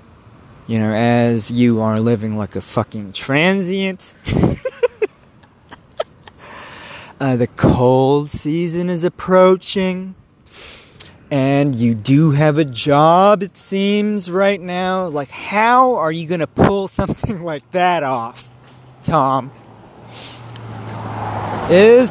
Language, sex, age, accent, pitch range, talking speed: English, male, 30-49, American, 120-185 Hz, 105 wpm